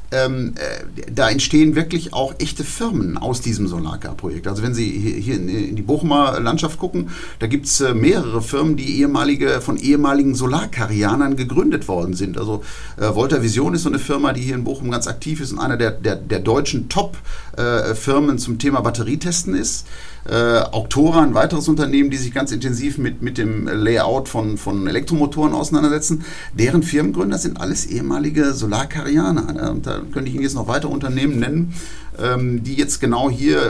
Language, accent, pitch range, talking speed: German, German, 115-150 Hz, 165 wpm